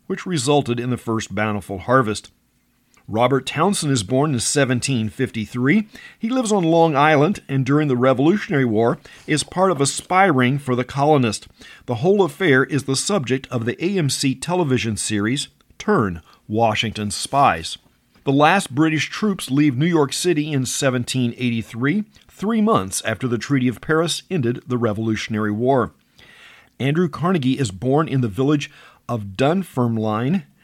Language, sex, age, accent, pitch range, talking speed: English, male, 50-69, American, 120-160 Hz, 150 wpm